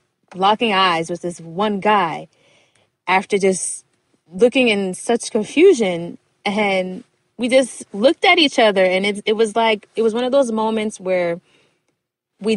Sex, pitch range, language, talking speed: female, 180-225 Hz, Hindi, 155 wpm